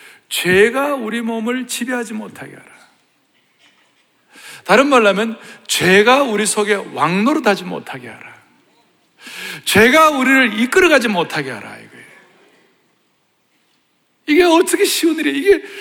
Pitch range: 215-305 Hz